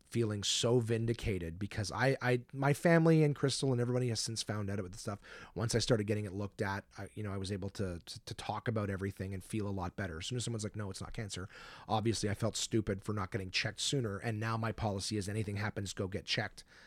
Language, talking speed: English, 255 wpm